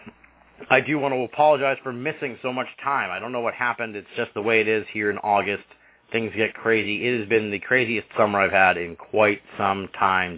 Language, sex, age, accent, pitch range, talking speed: English, male, 40-59, American, 100-120 Hz, 225 wpm